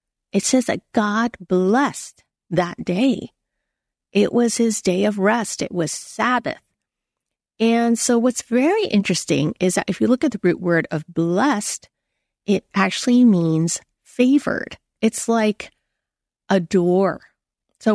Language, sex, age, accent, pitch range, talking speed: English, female, 40-59, American, 185-235 Hz, 135 wpm